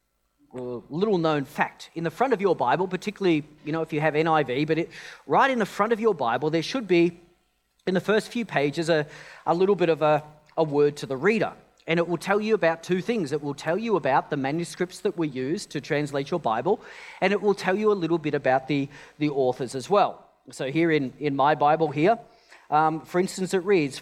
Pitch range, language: 145-185 Hz, English